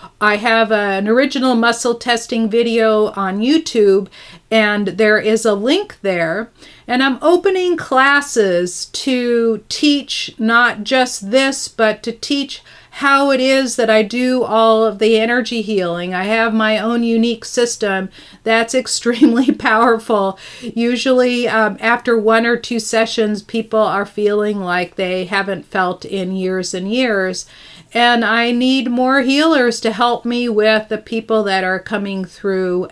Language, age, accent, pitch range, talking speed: English, 40-59, American, 205-245 Hz, 145 wpm